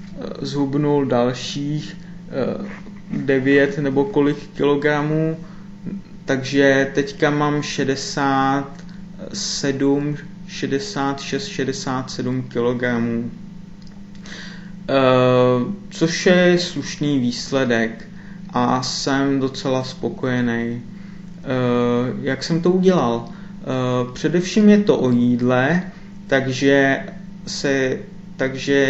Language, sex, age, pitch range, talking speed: Czech, male, 30-49, 125-185 Hz, 65 wpm